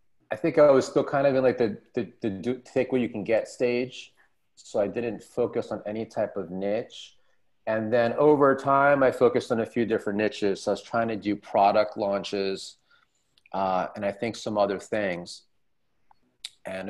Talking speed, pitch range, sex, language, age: 195 wpm, 95-125 Hz, male, English, 30-49